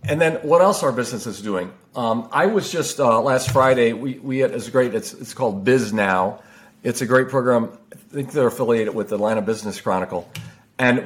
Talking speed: 215 wpm